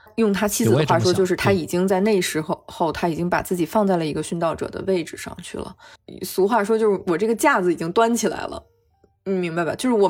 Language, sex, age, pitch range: Chinese, female, 20-39, 175-230 Hz